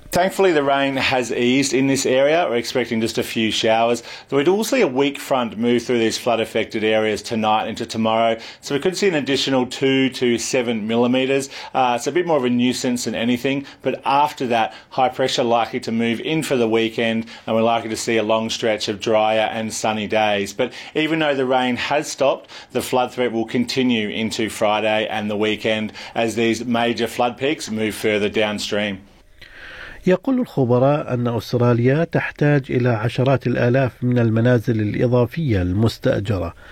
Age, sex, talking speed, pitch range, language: 40-59, male, 185 wpm, 110-130 Hz, Arabic